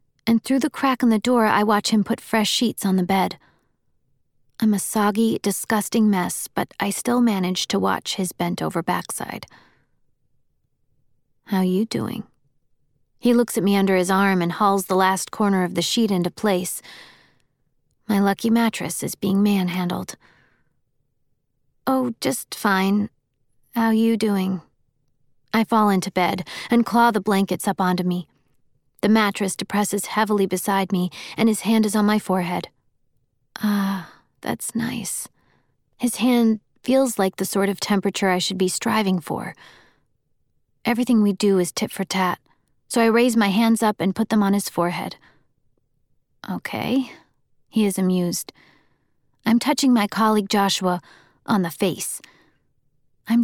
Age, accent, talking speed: 30-49, American, 150 wpm